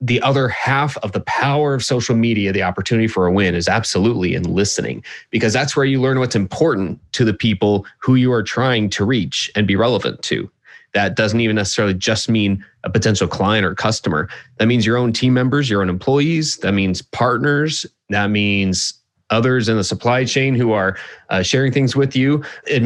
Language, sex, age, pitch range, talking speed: English, male, 30-49, 100-125 Hz, 200 wpm